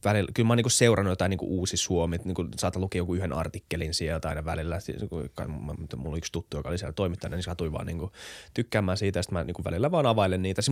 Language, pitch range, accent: Finnish, 90-115 Hz, native